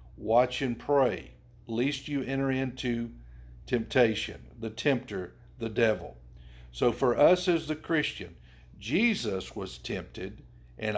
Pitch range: 90-135 Hz